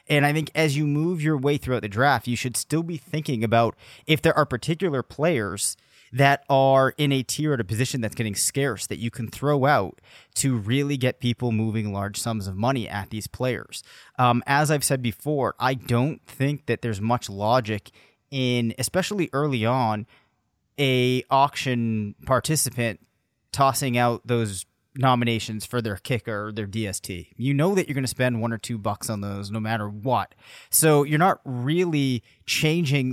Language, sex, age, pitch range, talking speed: English, male, 30-49, 110-140 Hz, 180 wpm